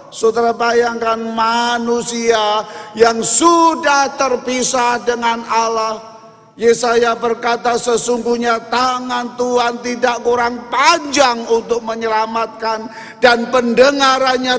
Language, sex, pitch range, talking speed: Indonesian, male, 205-255 Hz, 80 wpm